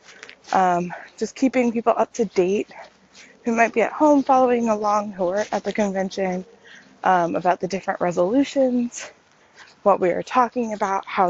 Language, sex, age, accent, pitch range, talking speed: English, female, 20-39, American, 185-250 Hz, 160 wpm